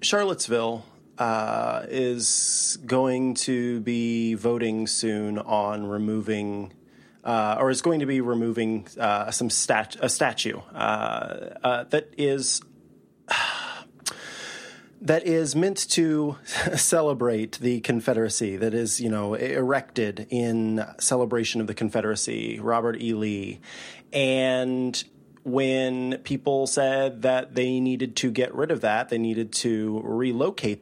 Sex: male